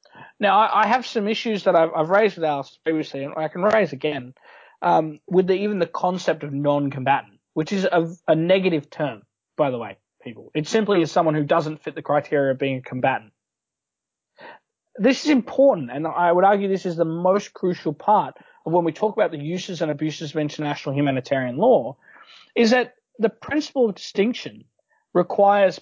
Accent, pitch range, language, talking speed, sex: Australian, 155-215 Hz, English, 190 wpm, male